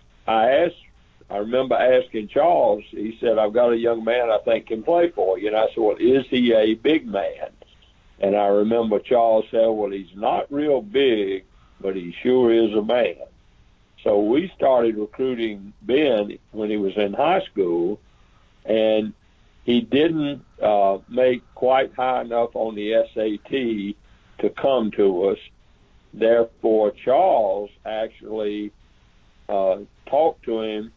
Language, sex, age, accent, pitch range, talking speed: English, male, 60-79, American, 100-125 Hz, 145 wpm